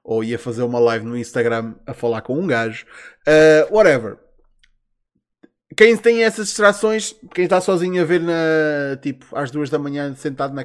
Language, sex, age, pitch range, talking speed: Portuguese, male, 20-39, 130-170 Hz, 165 wpm